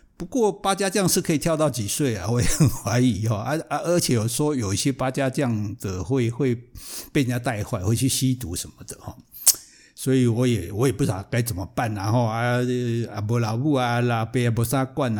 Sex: male